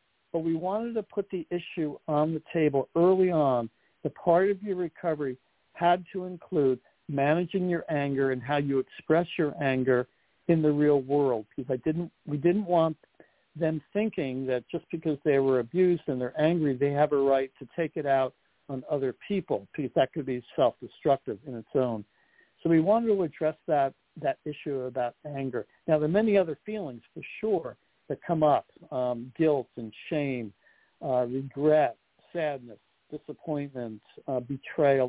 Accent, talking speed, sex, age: American, 170 wpm, male, 60-79